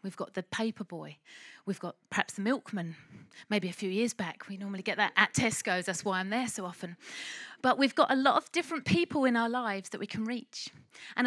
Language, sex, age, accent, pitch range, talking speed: English, female, 30-49, British, 210-265 Hz, 230 wpm